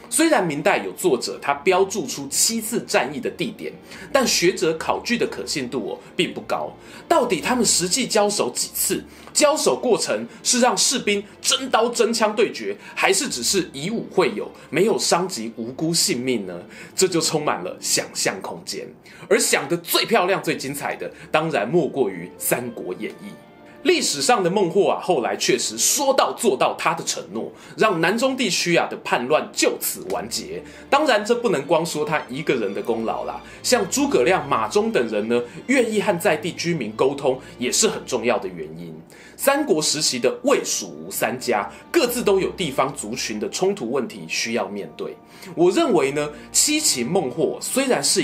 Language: Chinese